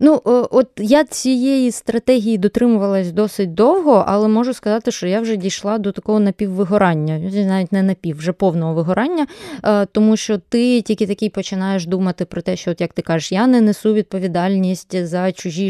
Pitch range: 180-235 Hz